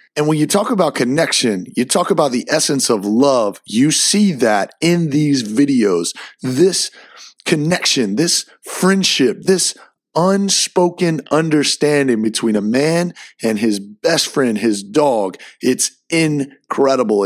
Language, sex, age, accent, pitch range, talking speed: English, male, 30-49, American, 115-155 Hz, 130 wpm